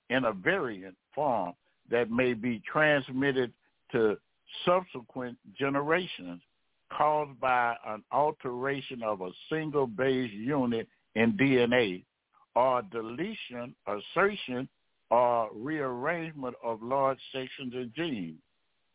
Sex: male